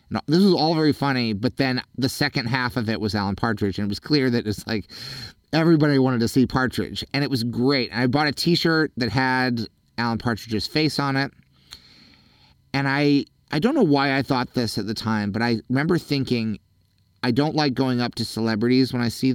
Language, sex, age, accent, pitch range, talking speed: English, male, 30-49, American, 105-135 Hz, 215 wpm